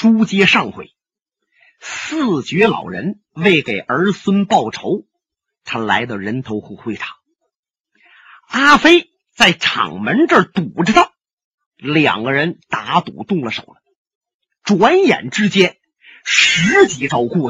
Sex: male